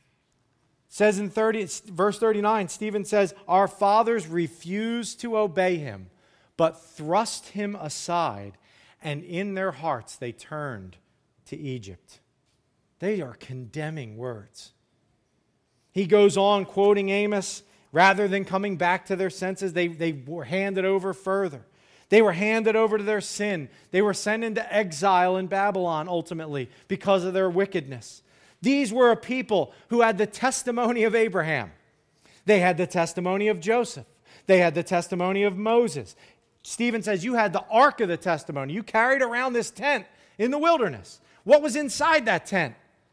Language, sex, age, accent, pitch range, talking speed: English, male, 40-59, American, 155-220 Hz, 150 wpm